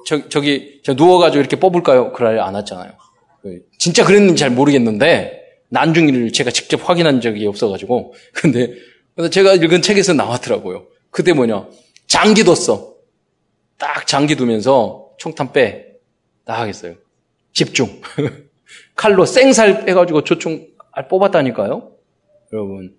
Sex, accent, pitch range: male, native, 125-195 Hz